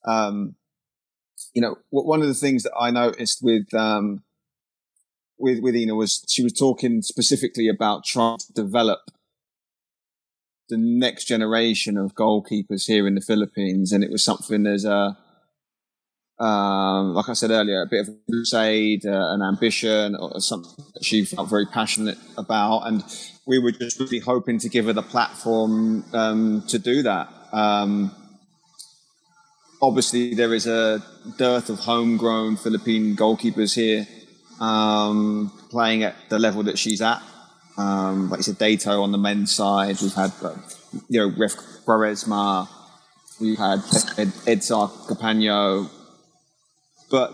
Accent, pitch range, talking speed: British, 105-115 Hz, 150 wpm